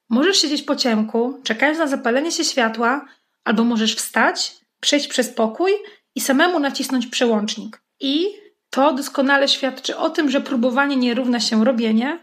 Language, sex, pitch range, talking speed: Polish, female, 240-295 Hz, 150 wpm